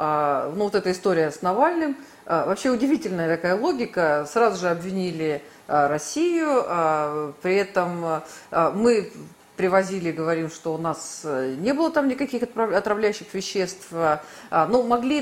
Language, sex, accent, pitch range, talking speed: Russian, female, native, 165-230 Hz, 120 wpm